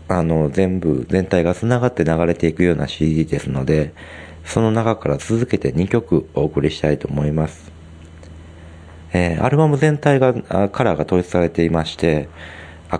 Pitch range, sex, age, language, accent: 80-95 Hz, male, 40-59, Japanese, native